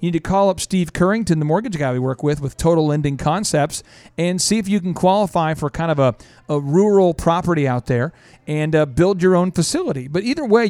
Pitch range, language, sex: 145-180 Hz, English, male